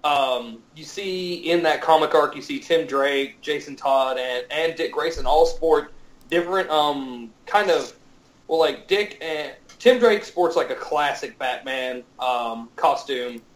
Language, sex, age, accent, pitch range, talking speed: English, male, 30-49, American, 125-165 Hz, 160 wpm